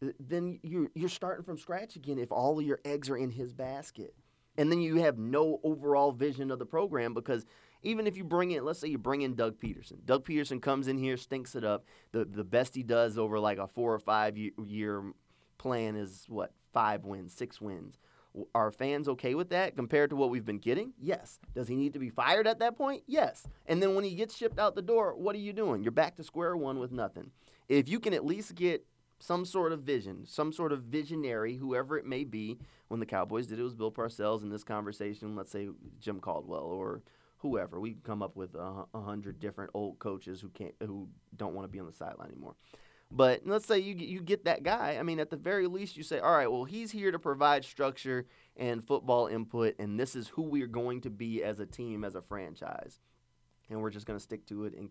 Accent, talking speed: American, 235 wpm